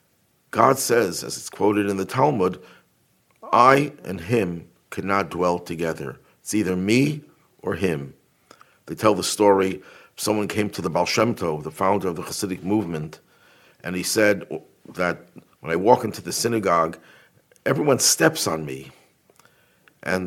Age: 50-69